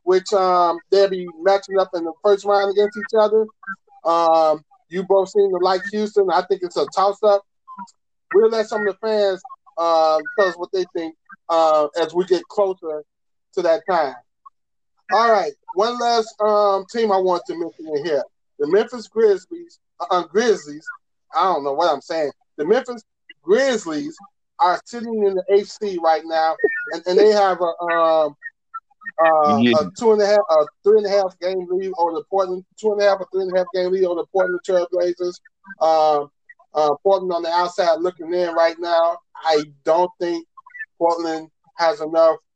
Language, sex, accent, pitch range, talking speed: English, male, American, 170-220 Hz, 190 wpm